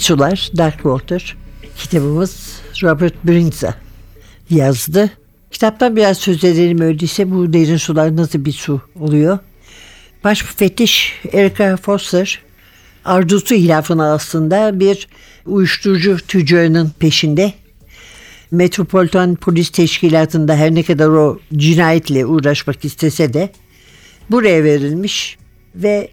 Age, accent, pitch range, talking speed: 60-79, native, 160-200 Hz, 100 wpm